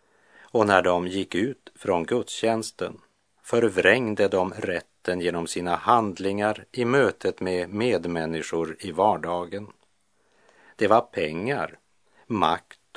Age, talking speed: 50-69, 105 wpm